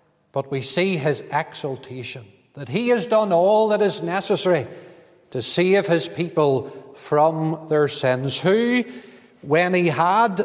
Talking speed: 140 wpm